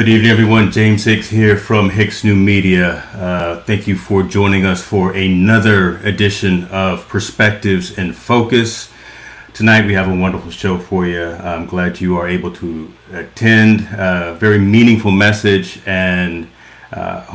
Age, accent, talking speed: 40-59, American, 155 wpm